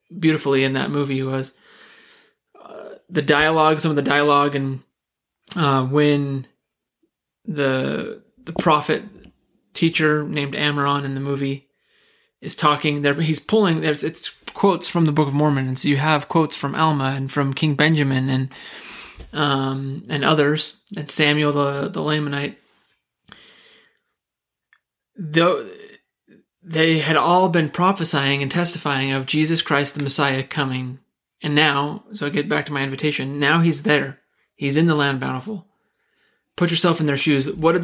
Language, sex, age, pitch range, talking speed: English, male, 20-39, 140-165 Hz, 150 wpm